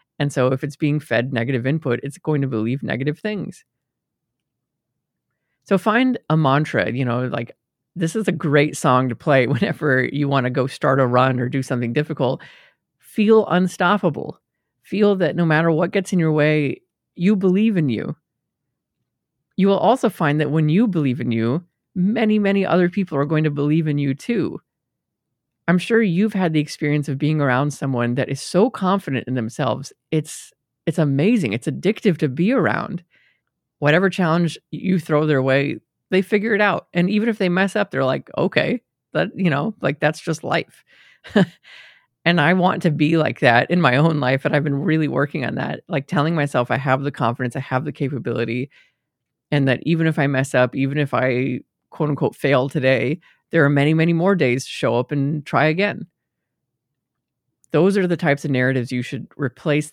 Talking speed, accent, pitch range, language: 190 wpm, American, 130-175 Hz, English